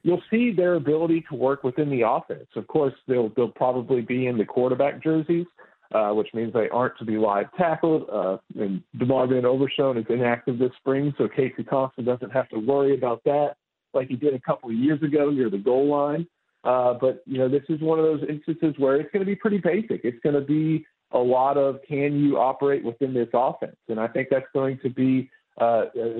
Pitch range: 120-145 Hz